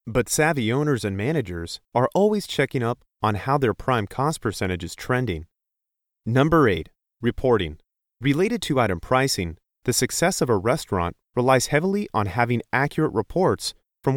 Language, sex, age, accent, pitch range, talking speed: English, male, 30-49, American, 100-140 Hz, 150 wpm